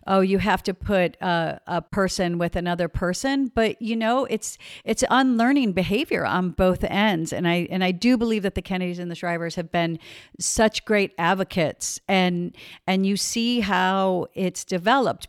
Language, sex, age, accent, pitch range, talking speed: English, female, 50-69, American, 175-205 Hz, 175 wpm